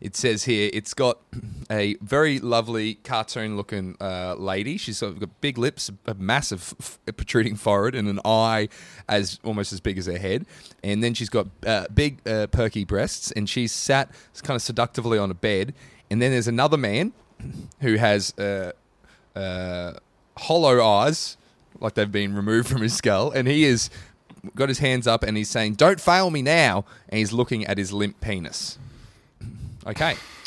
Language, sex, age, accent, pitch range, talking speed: English, male, 20-39, Australian, 100-130 Hz, 175 wpm